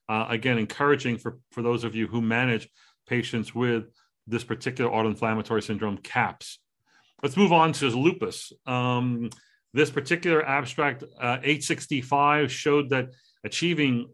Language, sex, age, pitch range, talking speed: English, male, 40-59, 120-150 Hz, 140 wpm